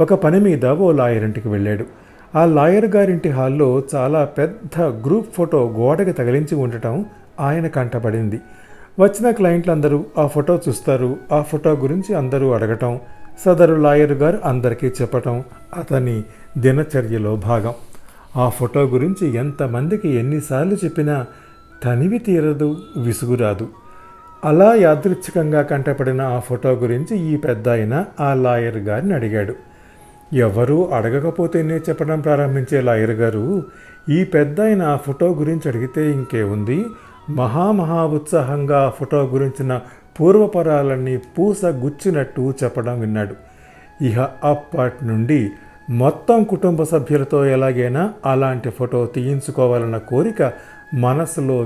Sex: male